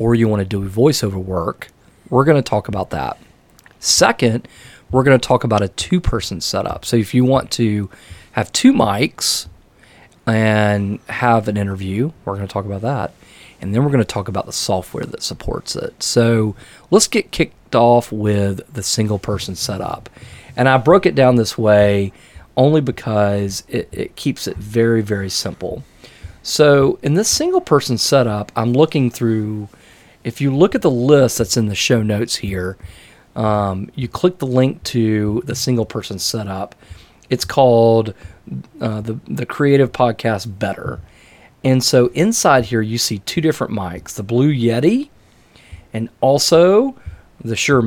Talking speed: 165 wpm